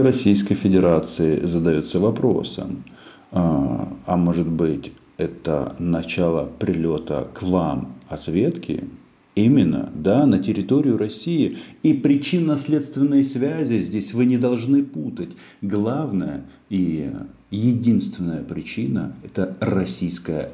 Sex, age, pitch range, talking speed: male, 50-69, 85-115 Hz, 95 wpm